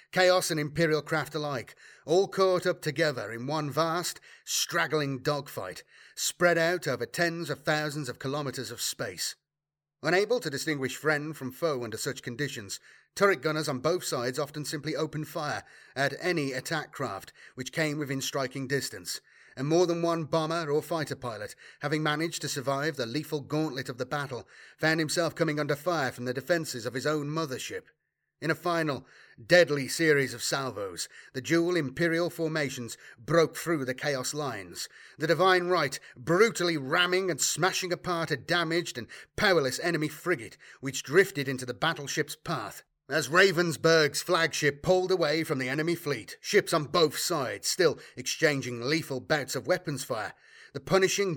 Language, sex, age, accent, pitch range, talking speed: English, male, 30-49, British, 140-170 Hz, 160 wpm